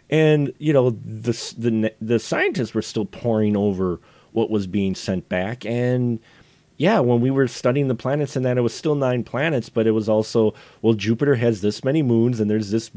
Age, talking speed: 30-49, 205 wpm